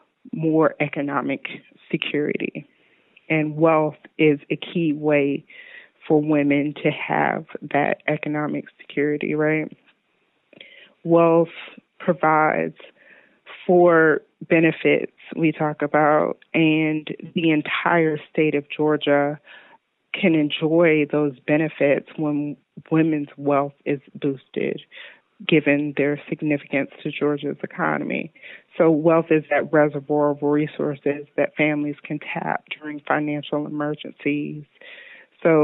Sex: female